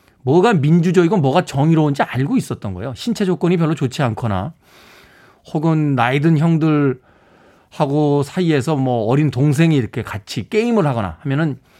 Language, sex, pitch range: Korean, male, 115-180 Hz